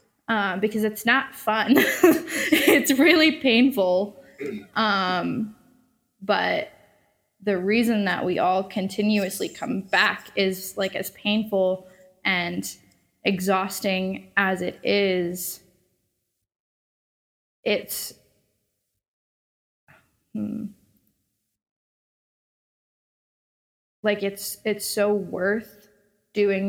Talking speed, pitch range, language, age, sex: 80 wpm, 185-210 Hz, English, 20-39, female